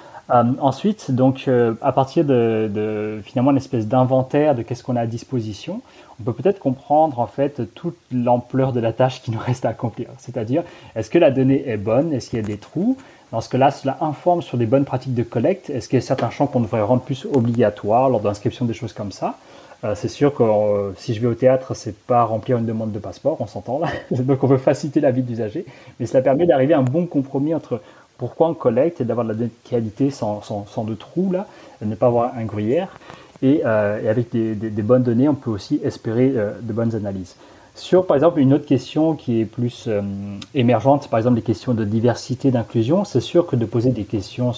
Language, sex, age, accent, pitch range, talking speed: French, male, 30-49, French, 115-135 Hz, 235 wpm